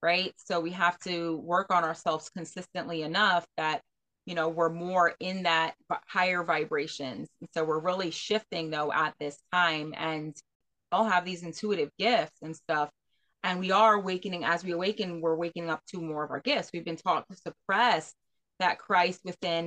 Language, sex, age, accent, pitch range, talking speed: English, female, 20-39, American, 165-195 Hz, 180 wpm